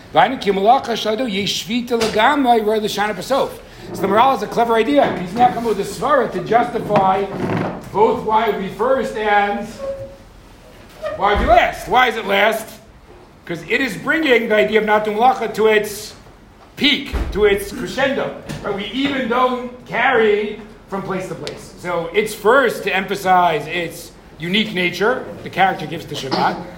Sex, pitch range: male, 180-225 Hz